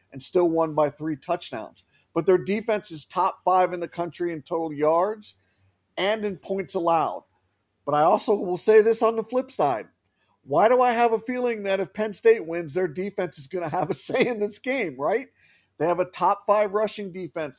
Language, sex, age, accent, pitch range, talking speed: English, male, 40-59, American, 155-200 Hz, 210 wpm